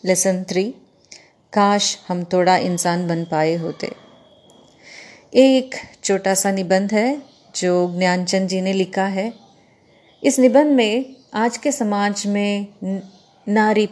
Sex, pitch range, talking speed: female, 190-235 Hz, 120 wpm